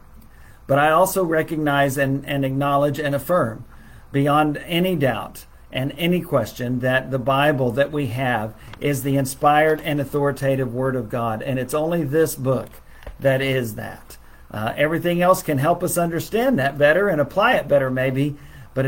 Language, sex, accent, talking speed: English, male, American, 165 wpm